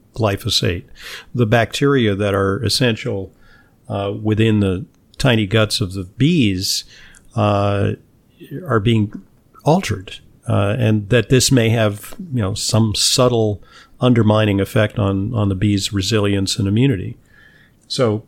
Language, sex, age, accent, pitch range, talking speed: English, male, 50-69, American, 105-130 Hz, 125 wpm